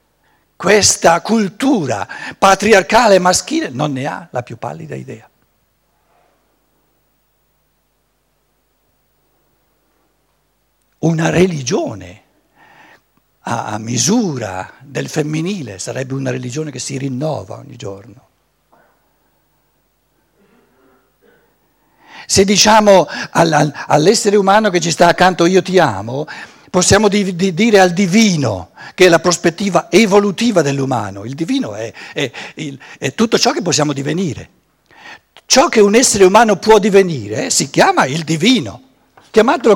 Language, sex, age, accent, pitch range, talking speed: Italian, male, 60-79, native, 150-220 Hz, 105 wpm